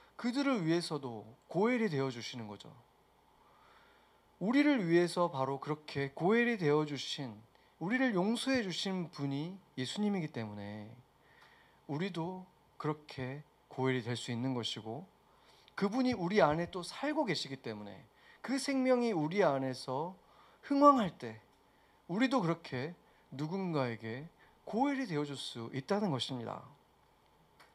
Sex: male